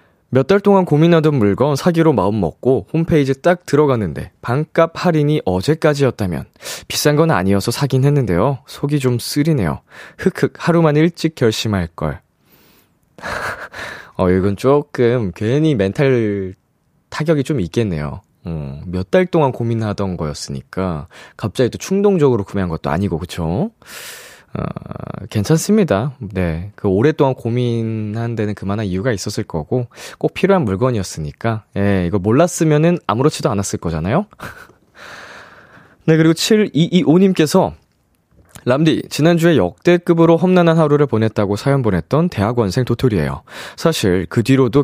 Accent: native